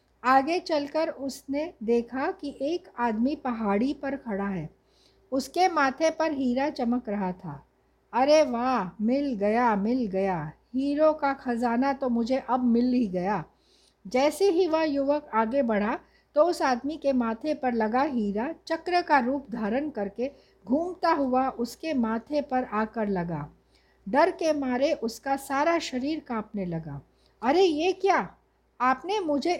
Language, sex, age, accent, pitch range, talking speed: Hindi, female, 60-79, native, 235-300 Hz, 145 wpm